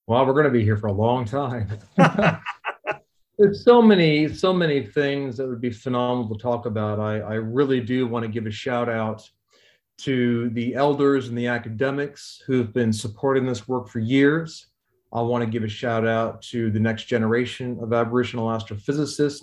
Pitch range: 115-135 Hz